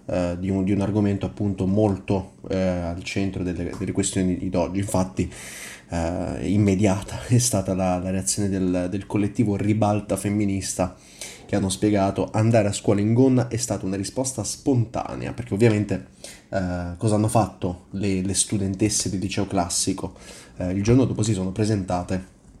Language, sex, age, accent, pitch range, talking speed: Italian, male, 20-39, native, 95-110 Hz, 160 wpm